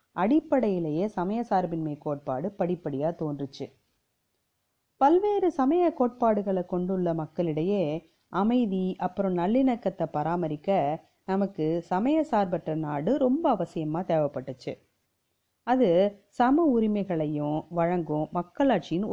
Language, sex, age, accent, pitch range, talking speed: Tamil, female, 30-49, native, 160-220 Hz, 85 wpm